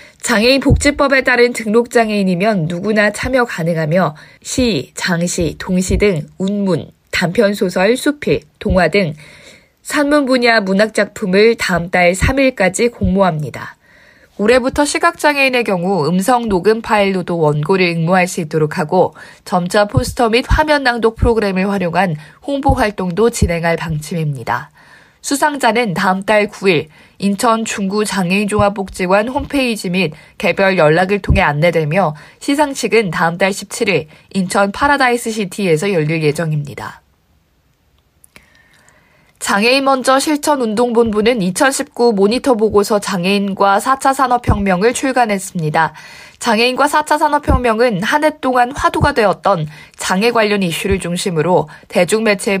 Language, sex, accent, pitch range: Korean, female, native, 180-235 Hz